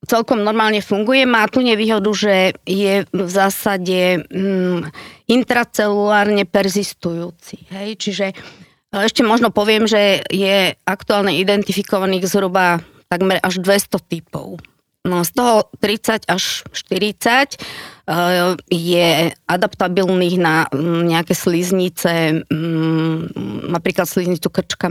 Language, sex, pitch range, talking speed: English, female, 175-215 Hz, 105 wpm